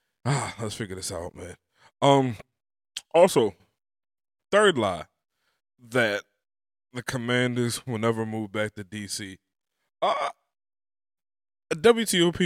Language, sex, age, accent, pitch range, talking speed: English, male, 20-39, American, 110-145 Hz, 100 wpm